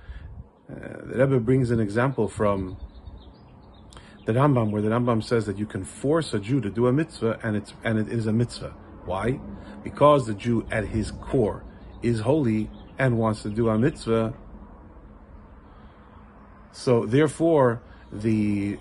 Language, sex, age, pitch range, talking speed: English, male, 40-59, 100-135 Hz, 150 wpm